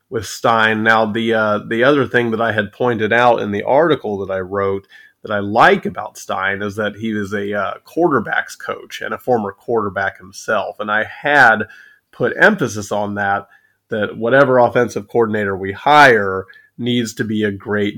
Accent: American